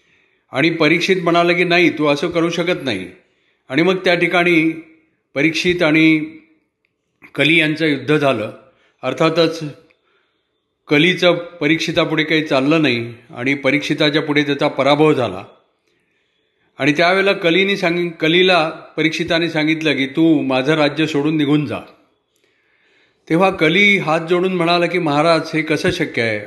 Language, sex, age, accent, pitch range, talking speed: Marathi, male, 40-59, native, 140-175 Hz, 130 wpm